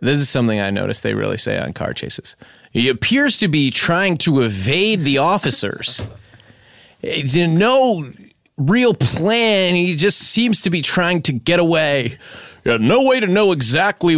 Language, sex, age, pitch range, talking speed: English, male, 30-49, 130-190 Hz, 160 wpm